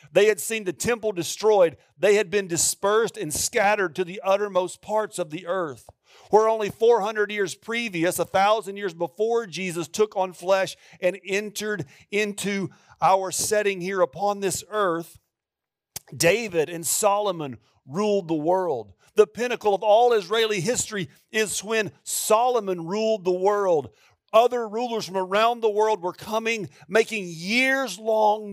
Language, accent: English, American